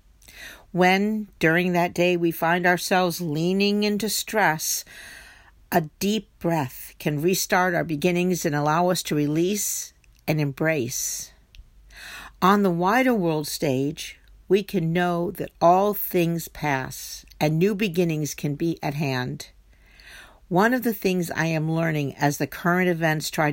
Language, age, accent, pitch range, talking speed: English, 50-69, American, 145-185 Hz, 140 wpm